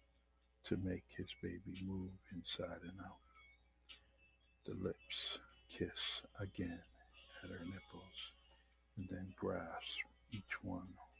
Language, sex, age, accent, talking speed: English, male, 60-79, American, 105 wpm